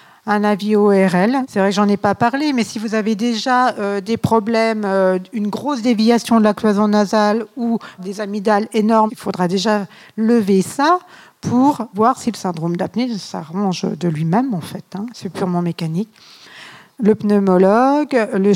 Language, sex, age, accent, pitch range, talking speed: French, female, 50-69, French, 190-225 Hz, 170 wpm